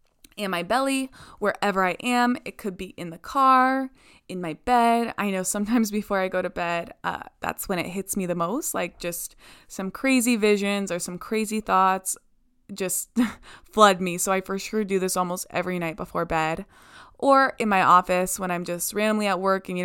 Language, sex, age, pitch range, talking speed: English, female, 20-39, 185-235 Hz, 200 wpm